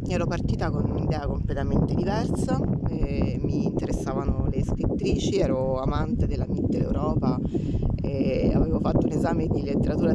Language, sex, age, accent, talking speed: Italian, female, 20-39, native, 130 wpm